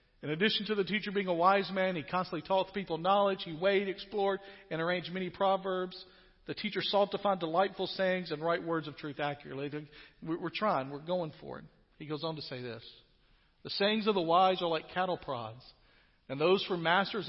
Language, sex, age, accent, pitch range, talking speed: English, male, 40-59, American, 125-170 Hz, 205 wpm